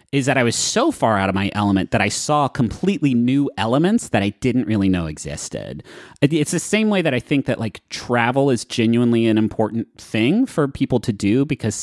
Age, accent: 30-49, American